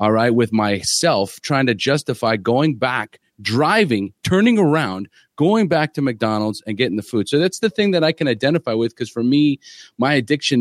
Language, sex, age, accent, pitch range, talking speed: English, male, 30-49, American, 110-150 Hz, 190 wpm